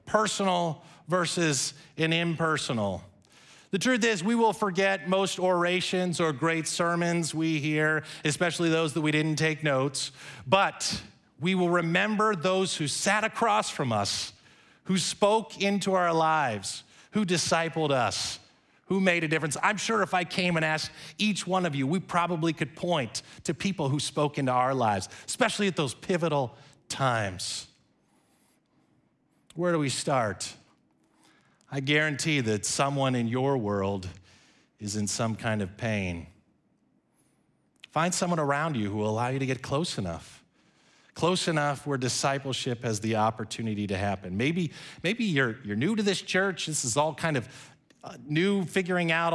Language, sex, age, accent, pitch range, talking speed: English, male, 30-49, American, 120-175 Hz, 155 wpm